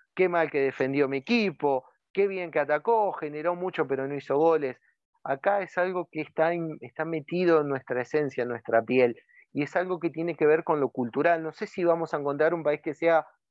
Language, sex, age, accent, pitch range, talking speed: English, male, 30-49, Argentinian, 135-175 Hz, 220 wpm